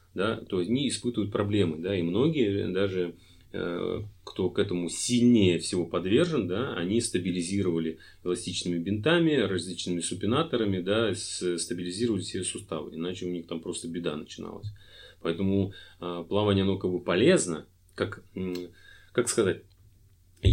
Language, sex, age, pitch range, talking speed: Russian, male, 30-49, 90-110 Hz, 125 wpm